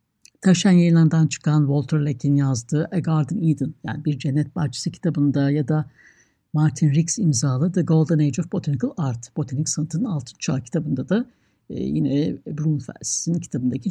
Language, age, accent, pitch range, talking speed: Turkish, 60-79, native, 145-205 Hz, 145 wpm